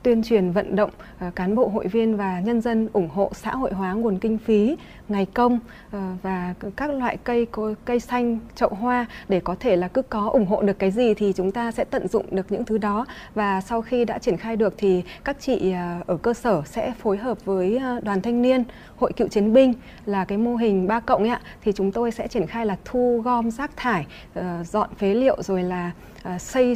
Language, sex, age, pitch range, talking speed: Vietnamese, female, 20-39, 195-245 Hz, 220 wpm